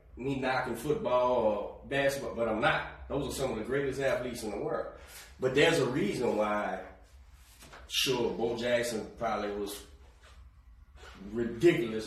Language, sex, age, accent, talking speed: English, male, 30-49, American, 145 wpm